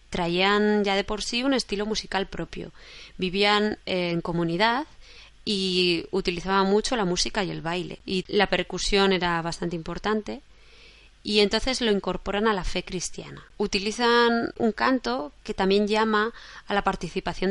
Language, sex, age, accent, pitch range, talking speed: Spanish, female, 20-39, Spanish, 180-210 Hz, 145 wpm